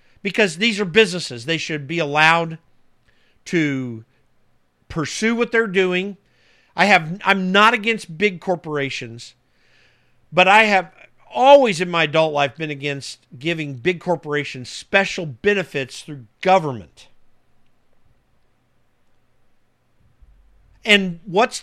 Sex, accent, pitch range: male, American, 150-210 Hz